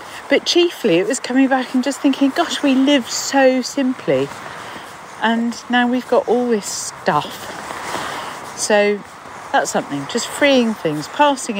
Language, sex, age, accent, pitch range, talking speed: English, female, 50-69, British, 170-225 Hz, 145 wpm